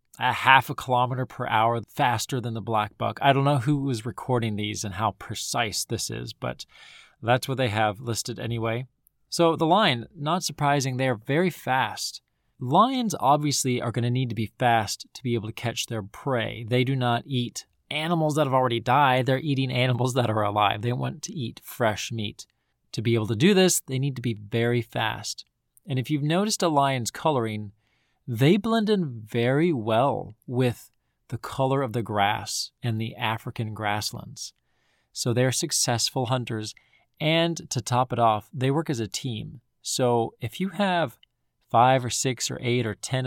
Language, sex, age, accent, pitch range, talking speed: English, male, 20-39, American, 115-145 Hz, 185 wpm